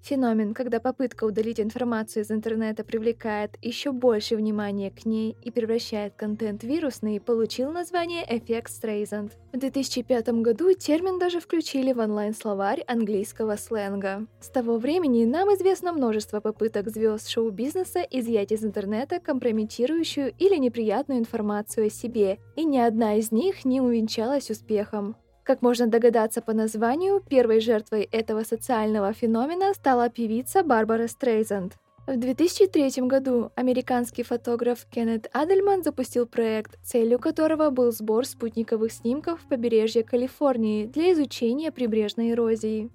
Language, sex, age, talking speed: Russian, female, 20-39, 130 wpm